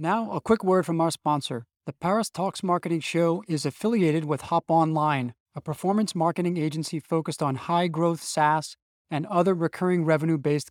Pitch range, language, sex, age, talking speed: 150-185 Hz, English, male, 30-49, 160 wpm